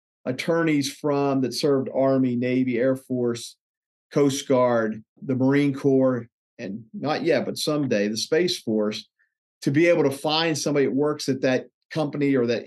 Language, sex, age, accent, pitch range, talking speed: English, male, 40-59, American, 125-155 Hz, 160 wpm